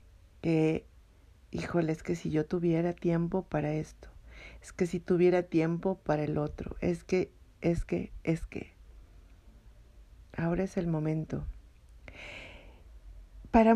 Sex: female